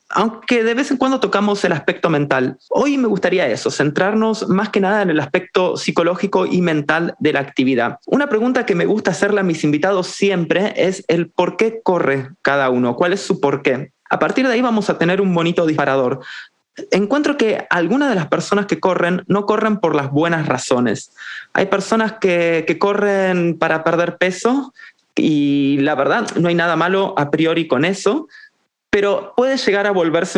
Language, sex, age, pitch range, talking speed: Spanish, male, 20-39, 165-210 Hz, 190 wpm